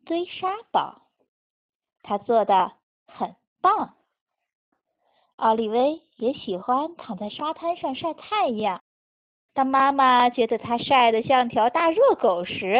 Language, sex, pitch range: Chinese, female, 210-295 Hz